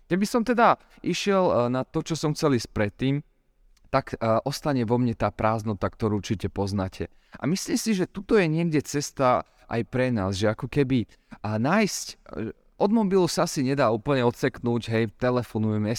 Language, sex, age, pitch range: Slovak, male, 30-49, 110-145 Hz